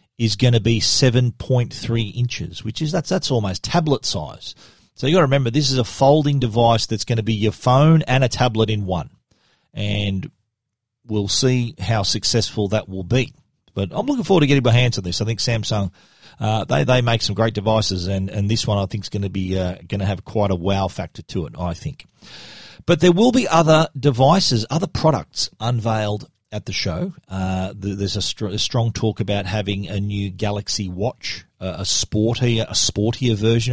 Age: 40-59